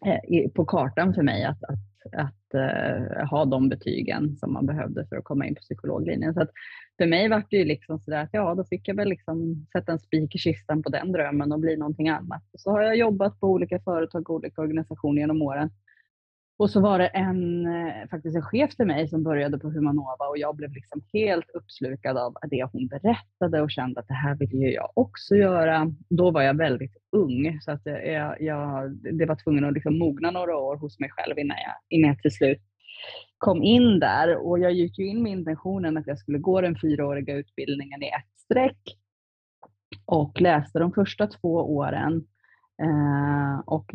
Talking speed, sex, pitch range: 190 wpm, female, 140-180 Hz